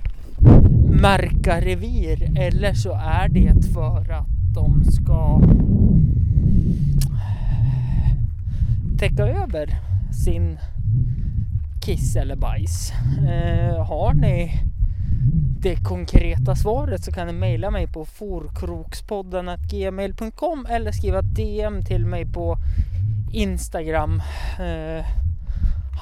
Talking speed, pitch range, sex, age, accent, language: 85 wpm, 80-110 Hz, male, 20-39, native, Swedish